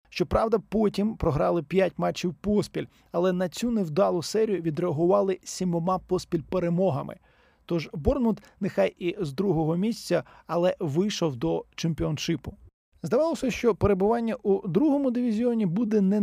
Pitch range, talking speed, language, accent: 165-195 Hz, 125 wpm, Ukrainian, native